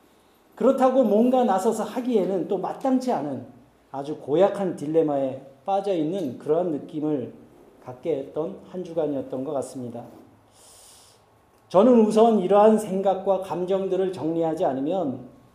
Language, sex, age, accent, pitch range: Korean, male, 40-59, native, 155-225 Hz